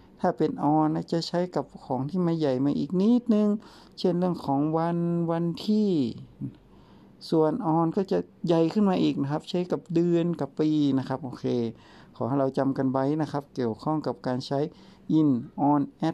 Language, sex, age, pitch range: Thai, male, 60-79, 130-170 Hz